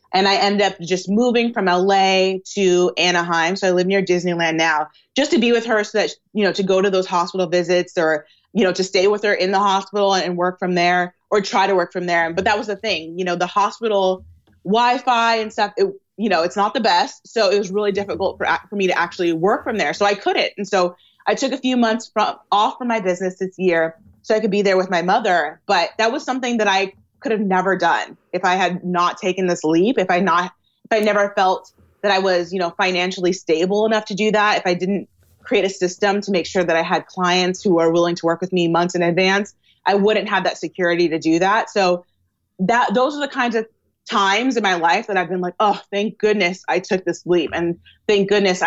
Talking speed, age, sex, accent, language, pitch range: 245 wpm, 20-39, female, American, English, 175-205 Hz